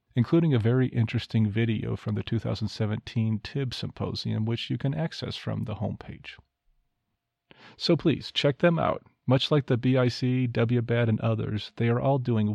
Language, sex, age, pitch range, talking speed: English, male, 40-59, 110-130 Hz, 160 wpm